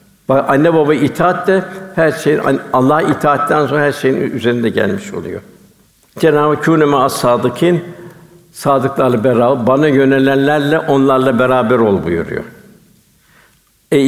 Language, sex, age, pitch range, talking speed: Turkish, male, 60-79, 135-165 Hz, 115 wpm